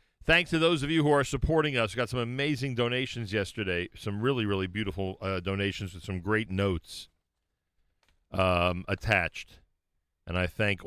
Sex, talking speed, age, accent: male, 165 wpm, 50-69, American